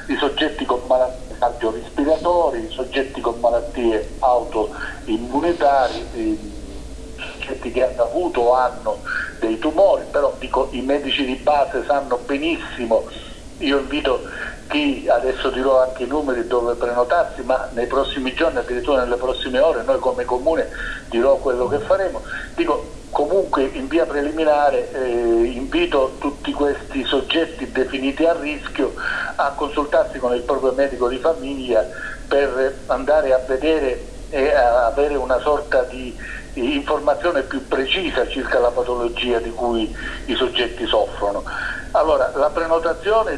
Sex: male